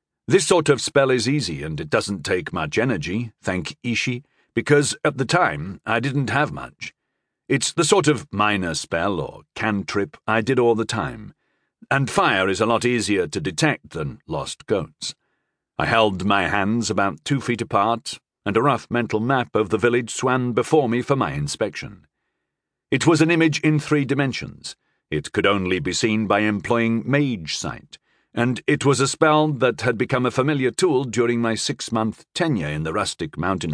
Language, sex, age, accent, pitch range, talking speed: English, male, 40-59, British, 110-140 Hz, 185 wpm